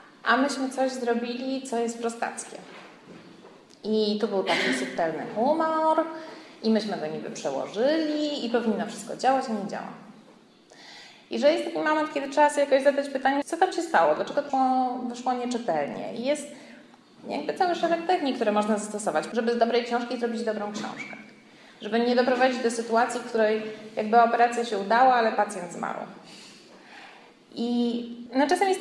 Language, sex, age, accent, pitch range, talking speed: Polish, female, 20-39, native, 230-275 Hz, 160 wpm